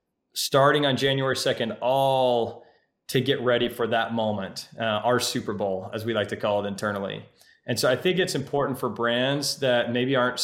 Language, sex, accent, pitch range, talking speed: English, male, American, 115-130 Hz, 190 wpm